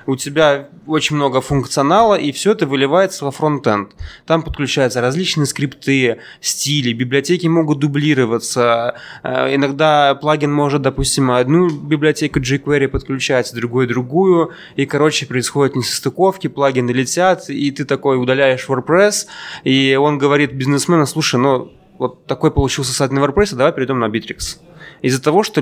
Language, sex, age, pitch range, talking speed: Russian, male, 20-39, 125-150 Hz, 140 wpm